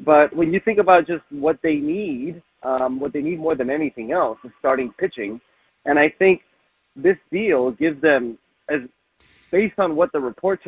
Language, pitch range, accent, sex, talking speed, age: English, 120-160 Hz, American, male, 185 wpm, 30-49